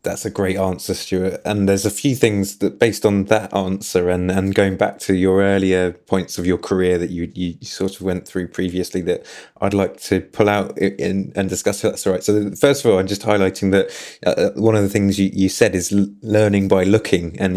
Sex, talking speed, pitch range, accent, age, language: male, 235 wpm, 95-105 Hz, British, 20-39, English